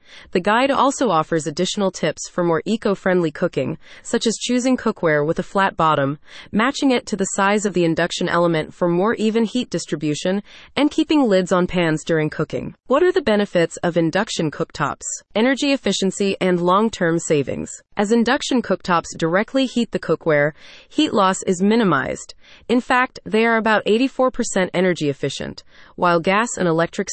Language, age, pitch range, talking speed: English, 30-49, 170-230 Hz, 165 wpm